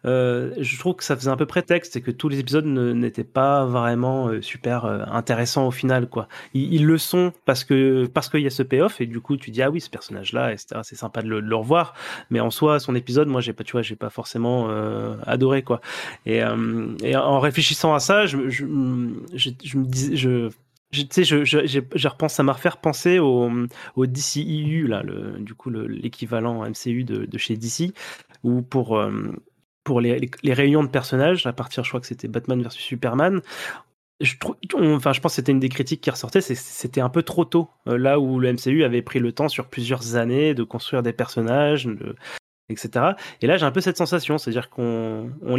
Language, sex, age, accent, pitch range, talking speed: French, male, 30-49, French, 120-150 Hz, 230 wpm